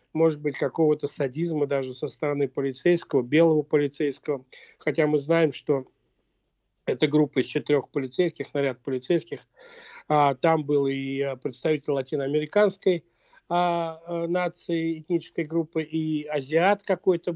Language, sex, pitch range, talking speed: Russian, male, 150-175 Hz, 110 wpm